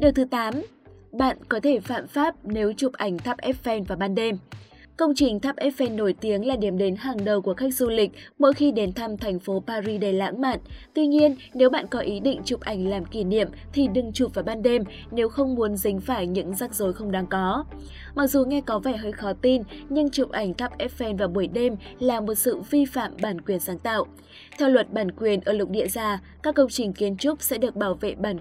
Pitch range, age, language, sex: 200-260 Hz, 20-39, Vietnamese, female